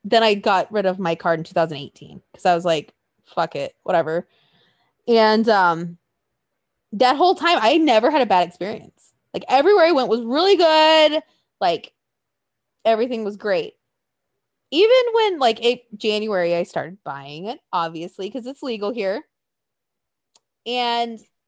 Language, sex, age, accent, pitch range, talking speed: English, female, 20-39, American, 195-315 Hz, 150 wpm